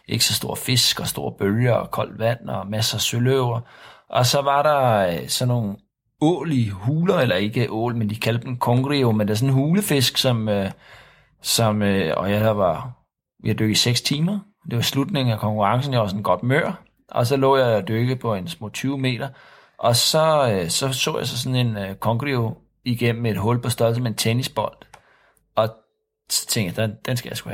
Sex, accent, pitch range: male, native, 110-135 Hz